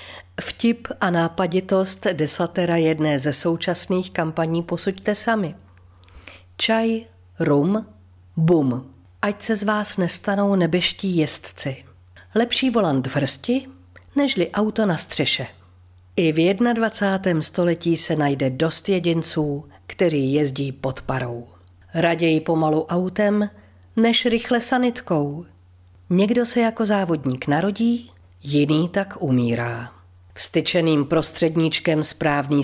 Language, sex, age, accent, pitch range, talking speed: Czech, female, 40-59, native, 125-195 Hz, 105 wpm